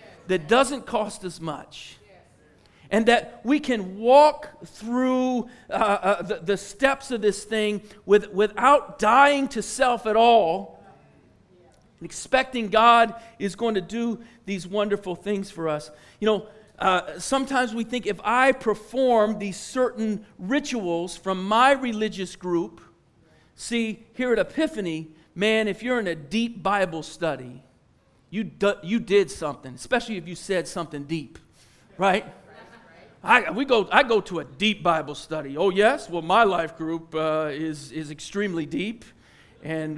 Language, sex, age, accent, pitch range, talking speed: English, male, 40-59, American, 185-250 Hz, 145 wpm